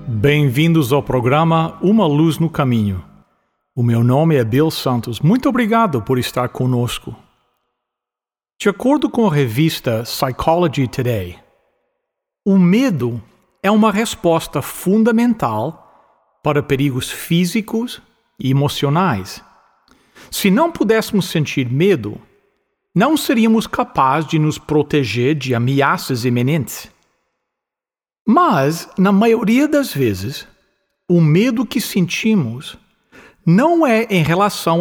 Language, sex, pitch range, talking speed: English, male, 140-210 Hz, 110 wpm